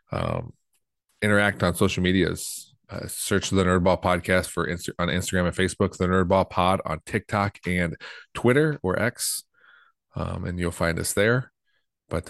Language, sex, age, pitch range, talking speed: English, male, 30-49, 85-100 Hz, 155 wpm